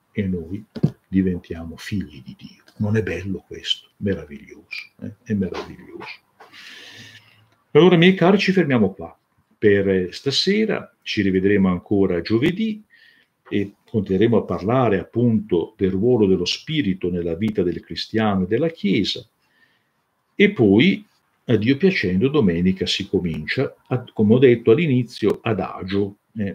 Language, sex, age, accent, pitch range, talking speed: Italian, male, 50-69, native, 90-115 Hz, 130 wpm